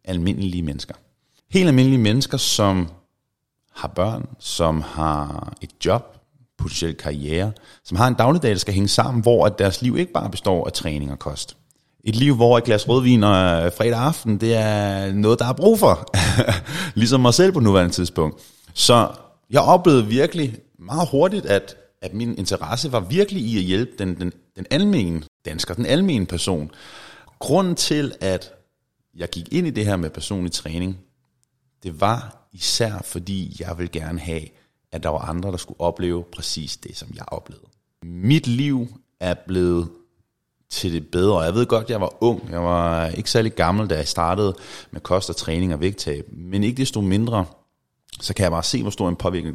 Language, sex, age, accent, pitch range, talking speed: Danish, male, 30-49, native, 85-120 Hz, 180 wpm